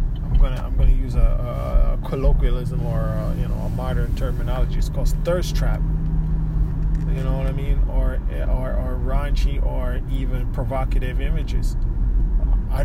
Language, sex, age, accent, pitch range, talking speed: English, male, 20-39, American, 115-140 Hz, 145 wpm